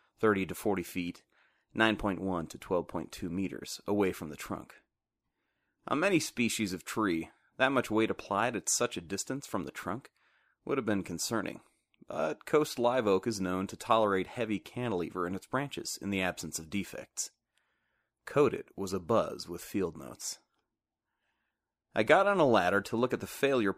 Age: 30-49